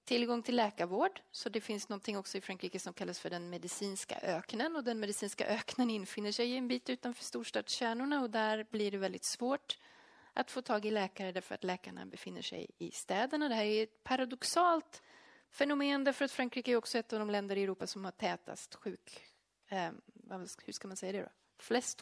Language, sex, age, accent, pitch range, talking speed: English, female, 30-49, Swedish, 195-255 Hz, 200 wpm